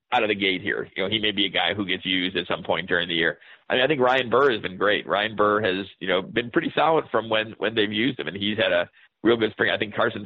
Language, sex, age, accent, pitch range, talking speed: English, male, 40-59, American, 95-110 Hz, 315 wpm